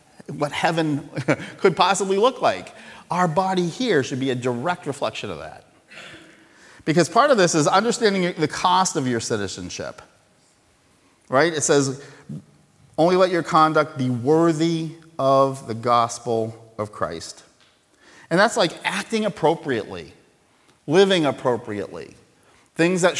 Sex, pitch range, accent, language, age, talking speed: male, 105-155 Hz, American, English, 40-59, 130 wpm